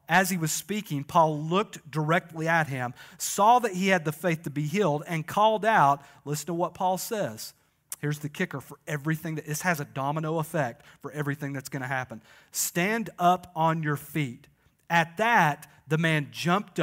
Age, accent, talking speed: 40-59, American, 190 wpm